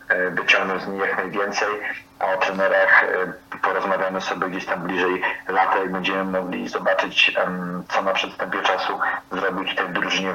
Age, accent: 30-49, native